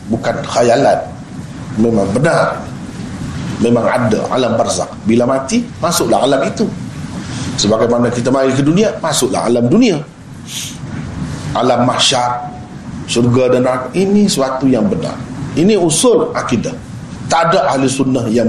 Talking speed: 125 wpm